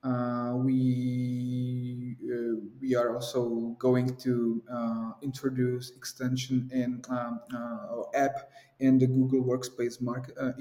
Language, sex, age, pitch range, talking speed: English, male, 20-39, 125-140 Hz, 120 wpm